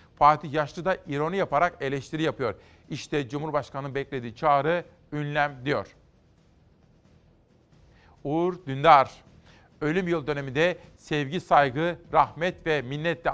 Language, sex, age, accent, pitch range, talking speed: Turkish, male, 40-59, native, 140-170 Hz, 105 wpm